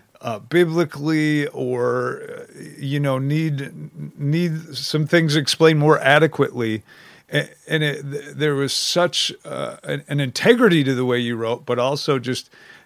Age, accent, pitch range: 40-59, American, 120-150 Hz